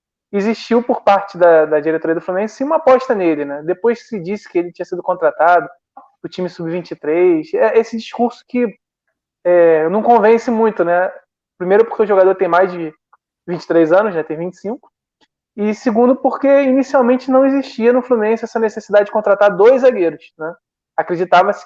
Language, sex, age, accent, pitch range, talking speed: Portuguese, male, 20-39, Brazilian, 165-220 Hz, 165 wpm